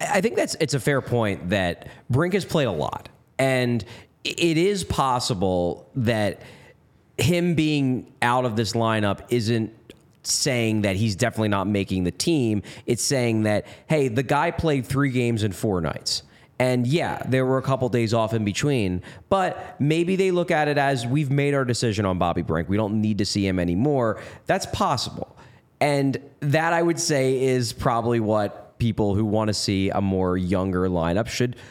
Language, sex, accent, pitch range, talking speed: English, male, American, 110-165 Hz, 180 wpm